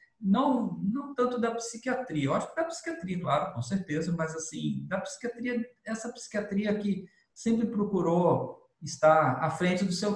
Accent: Brazilian